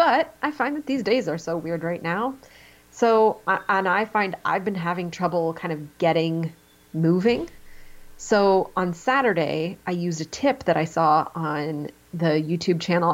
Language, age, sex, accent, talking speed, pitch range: English, 30-49, female, American, 170 wpm, 160-195 Hz